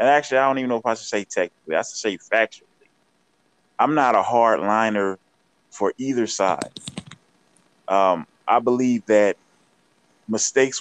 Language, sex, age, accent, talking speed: English, male, 20-39, American, 150 wpm